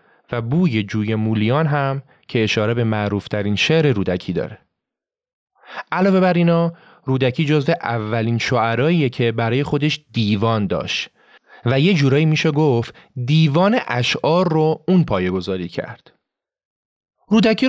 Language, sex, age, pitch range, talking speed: Persian, male, 30-49, 115-160 Hz, 120 wpm